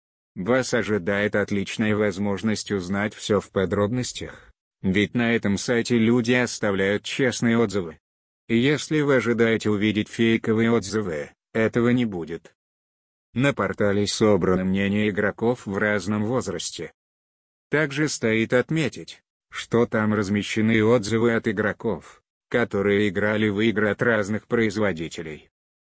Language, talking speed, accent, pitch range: Russian, 115 wpm, native, 100-120 Hz